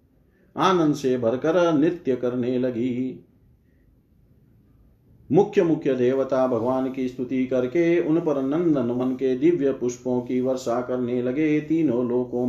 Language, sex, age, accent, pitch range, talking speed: Hindi, male, 40-59, native, 125-140 Hz, 125 wpm